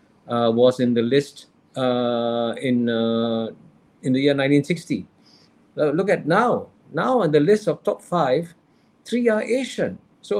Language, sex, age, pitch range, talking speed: English, male, 50-69, 125-200 Hz, 155 wpm